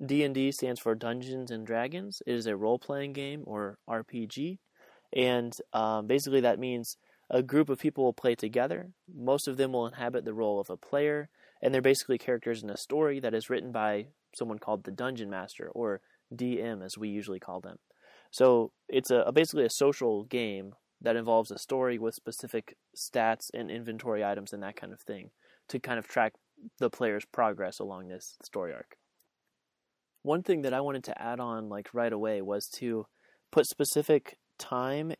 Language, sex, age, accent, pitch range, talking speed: English, male, 20-39, American, 110-135 Hz, 185 wpm